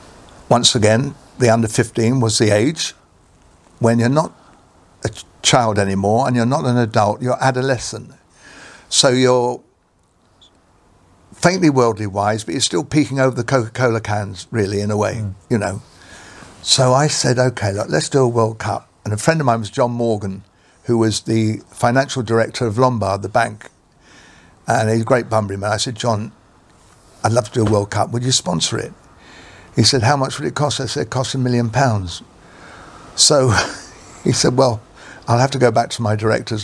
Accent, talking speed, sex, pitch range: British, 185 wpm, male, 105-125 Hz